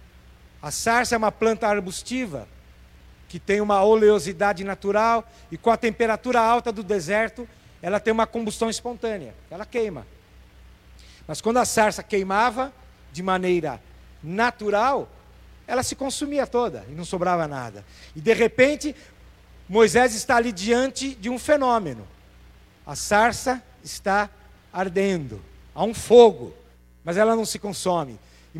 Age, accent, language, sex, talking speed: 50-69, Brazilian, Portuguese, male, 135 wpm